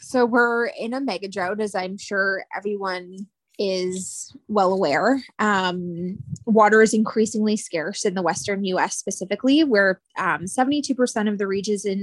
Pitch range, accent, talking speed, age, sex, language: 195-240 Hz, American, 150 wpm, 20-39, female, English